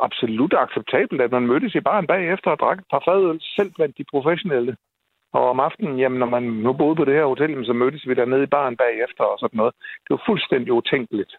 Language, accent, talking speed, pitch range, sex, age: Danish, native, 225 wpm, 115-150 Hz, male, 60-79